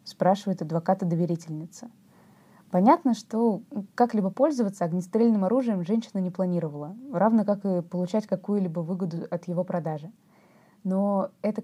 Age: 20-39